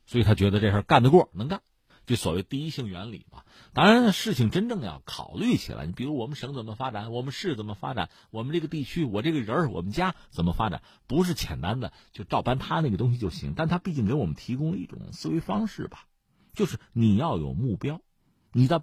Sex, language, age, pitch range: male, Chinese, 50-69, 105-165 Hz